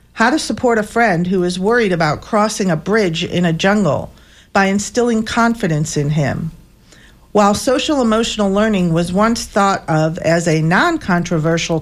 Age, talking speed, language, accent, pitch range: 50-69, 150 wpm, English, American, 165-210 Hz